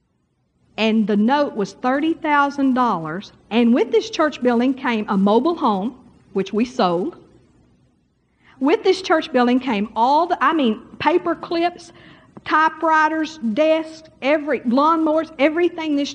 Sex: female